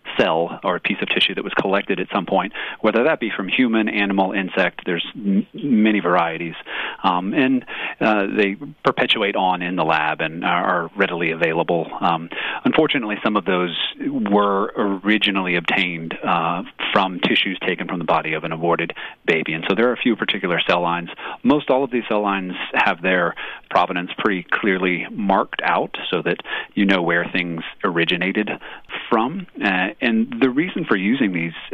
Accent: American